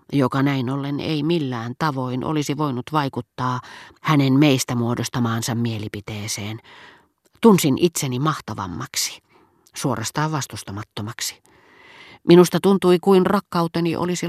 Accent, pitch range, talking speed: native, 125-155 Hz, 95 wpm